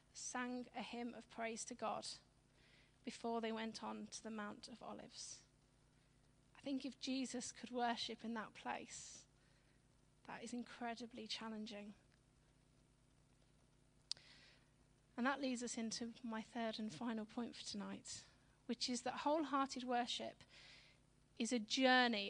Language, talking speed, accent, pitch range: English, 130 wpm, British, 205-255 Hz